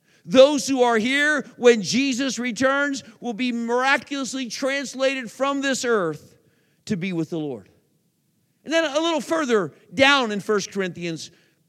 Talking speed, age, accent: 145 wpm, 50-69, American